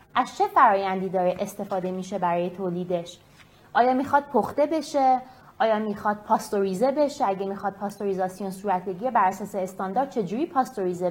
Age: 30-49